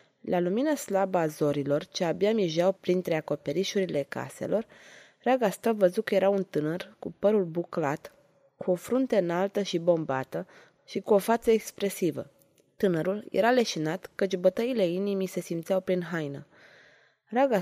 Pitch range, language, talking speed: 175-220 Hz, Romanian, 145 wpm